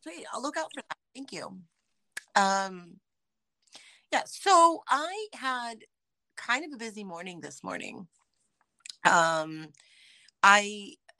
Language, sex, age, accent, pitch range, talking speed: English, female, 30-49, American, 170-210 Hz, 120 wpm